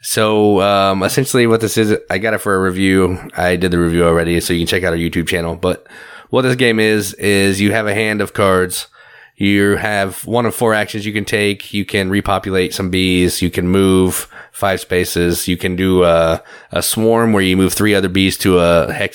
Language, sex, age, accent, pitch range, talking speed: English, male, 30-49, American, 90-105 Hz, 225 wpm